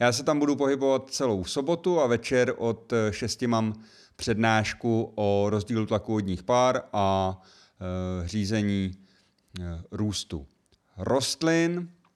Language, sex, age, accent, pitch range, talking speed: Czech, male, 30-49, native, 100-130 Hz, 115 wpm